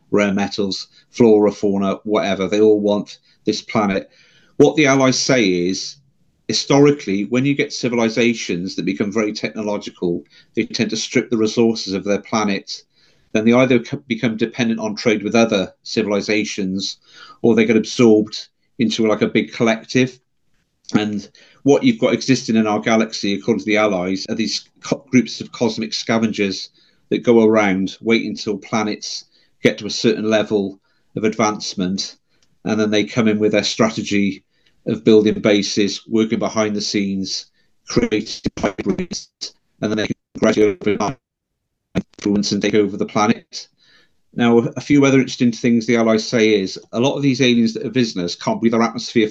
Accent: British